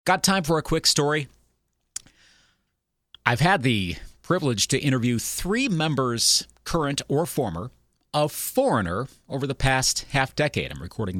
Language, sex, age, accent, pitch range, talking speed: English, male, 40-59, American, 95-130 Hz, 140 wpm